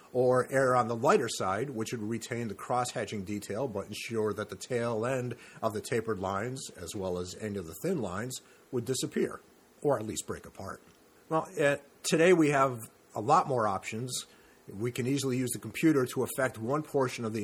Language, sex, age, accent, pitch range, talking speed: English, male, 40-59, American, 110-140 Hz, 200 wpm